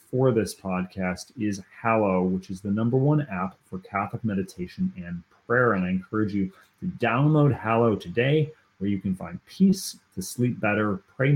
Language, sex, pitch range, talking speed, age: English, male, 95-125 Hz, 175 wpm, 30-49